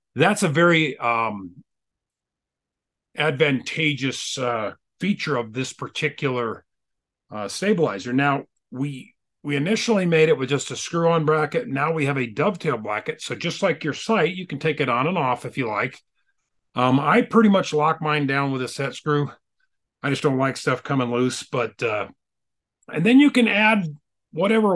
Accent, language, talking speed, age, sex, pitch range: American, English, 170 wpm, 40-59, male, 130-175 Hz